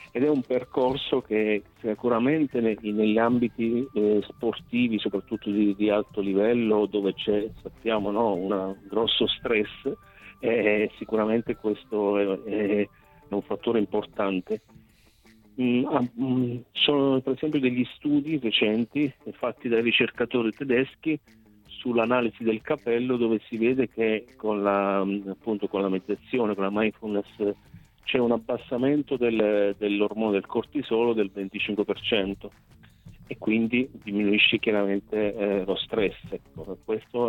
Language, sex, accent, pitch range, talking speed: Italian, male, native, 105-120 Hz, 115 wpm